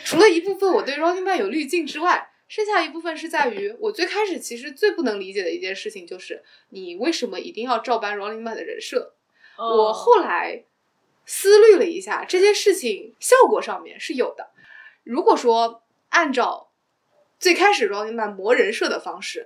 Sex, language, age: female, Chinese, 20-39